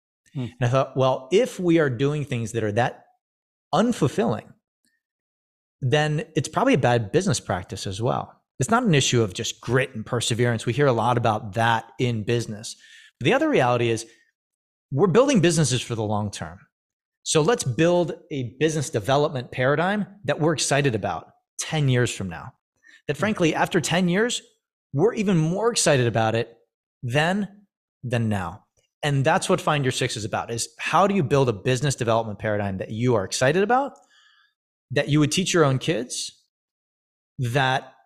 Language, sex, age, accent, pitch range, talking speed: English, male, 30-49, American, 120-160 Hz, 175 wpm